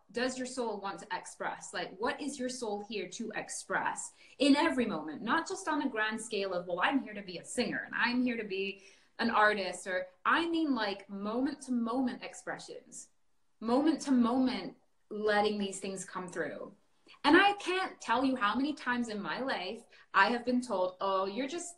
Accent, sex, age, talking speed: American, female, 20-39, 200 wpm